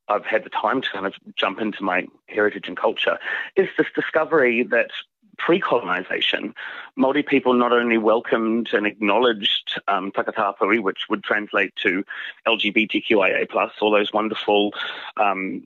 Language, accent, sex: English, British, male